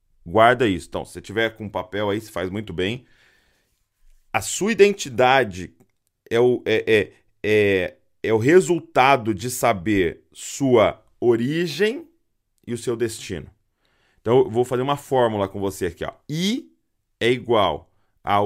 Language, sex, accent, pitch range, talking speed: Portuguese, male, Brazilian, 100-140 Hz, 155 wpm